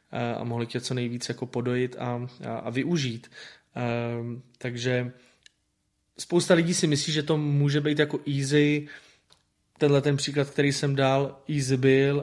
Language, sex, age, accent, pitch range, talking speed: Czech, male, 20-39, native, 125-140 Hz, 150 wpm